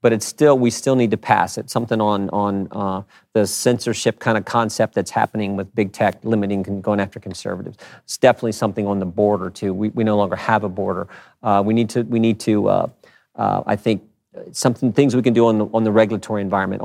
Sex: male